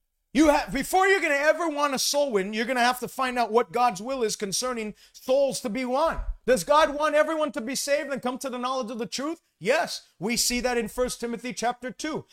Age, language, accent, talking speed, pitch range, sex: 40-59, English, American, 240 wpm, 230-280 Hz, male